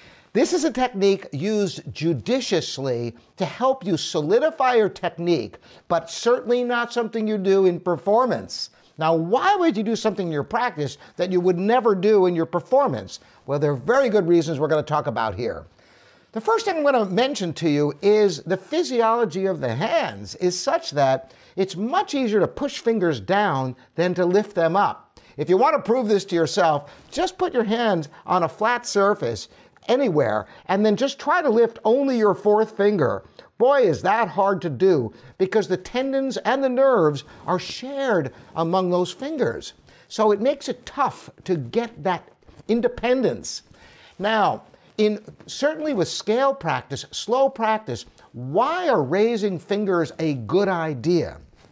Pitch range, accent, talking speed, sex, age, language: 165-240 Hz, American, 165 wpm, male, 50-69, English